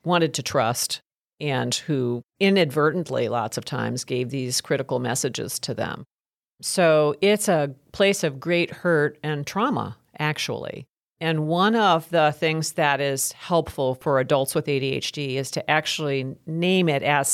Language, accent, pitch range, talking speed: English, American, 140-170 Hz, 150 wpm